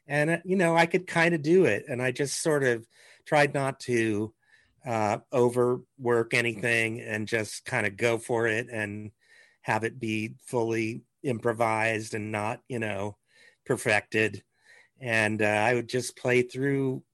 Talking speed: 160 wpm